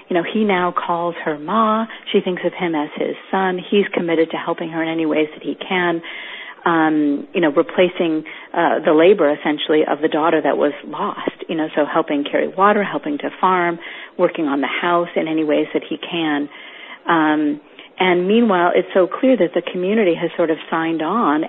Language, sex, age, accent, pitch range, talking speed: English, female, 40-59, American, 155-195 Hz, 200 wpm